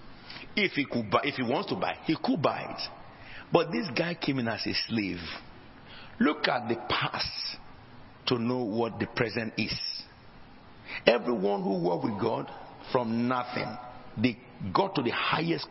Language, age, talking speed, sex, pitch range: English, 50-69, 165 wpm, male, 125-175 Hz